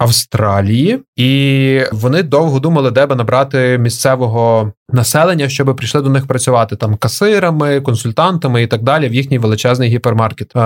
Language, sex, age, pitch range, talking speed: Ukrainian, male, 20-39, 120-150 Hz, 140 wpm